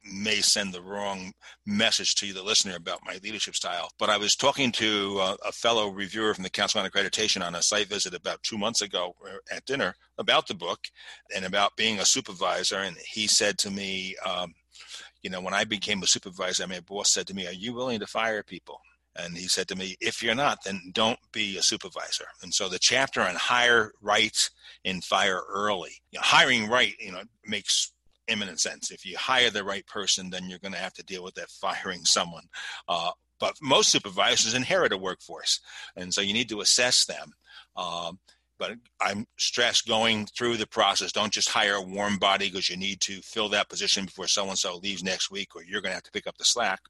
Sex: male